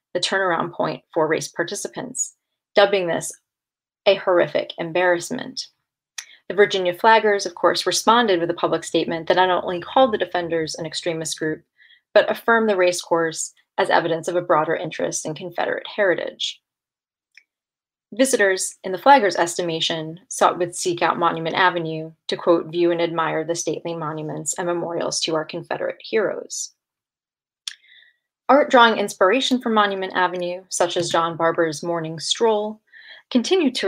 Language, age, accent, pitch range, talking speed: English, 30-49, American, 165-210 Hz, 145 wpm